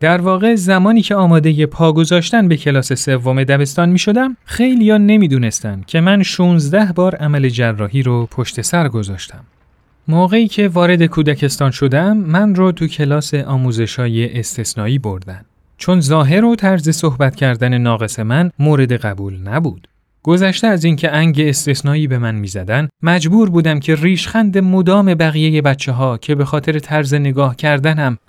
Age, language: 30-49, Persian